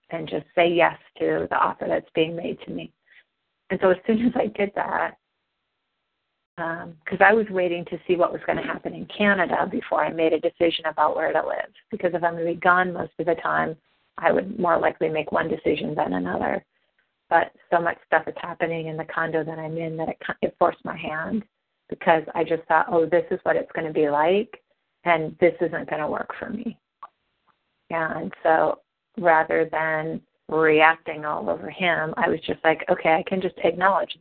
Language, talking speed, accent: English, 210 wpm, American